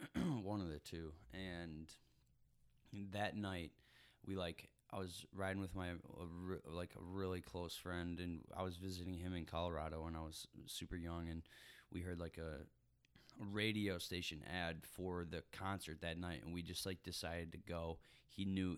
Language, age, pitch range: English, 20-39, 85-105 Hz